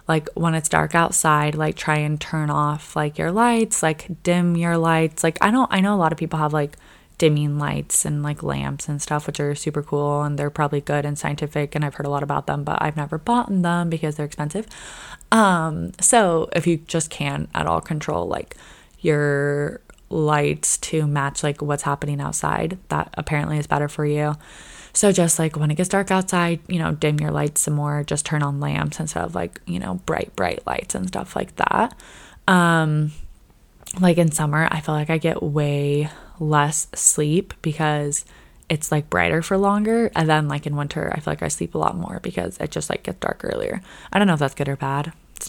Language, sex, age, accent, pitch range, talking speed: English, female, 20-39, American, 145-170 Hz, 215 wpm